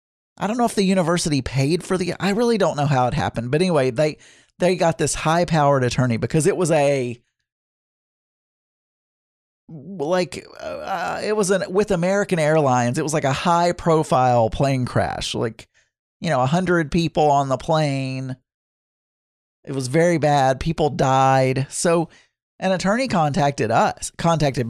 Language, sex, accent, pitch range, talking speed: English, male, American, 130-180 Hz, 155 wpm